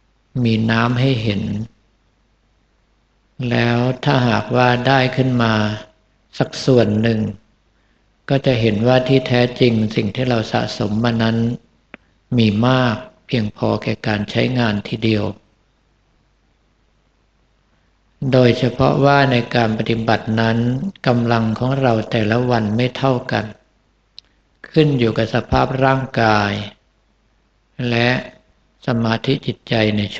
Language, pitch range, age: Thai, 110-125 Hz, 60-79